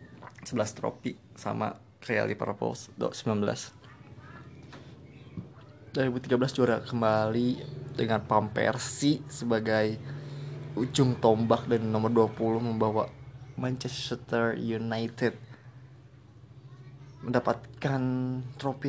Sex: male